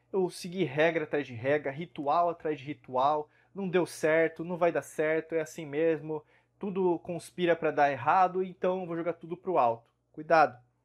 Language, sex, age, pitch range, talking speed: Portuguese, male, 20-39, 140-175 Hz, 175 wpm